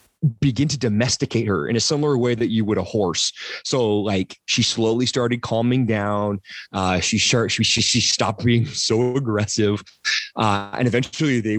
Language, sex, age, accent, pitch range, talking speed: English, male, 30-49, American, 105-125 Hz, 170 wpm